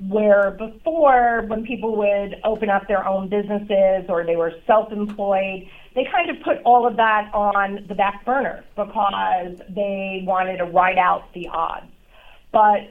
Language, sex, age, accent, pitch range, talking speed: English, female, 40-59, American, 185-220 Hz, 160 wpm